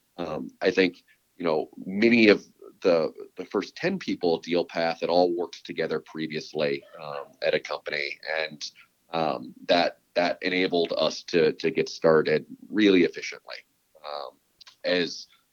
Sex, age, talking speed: male, 30-49, 145 wpm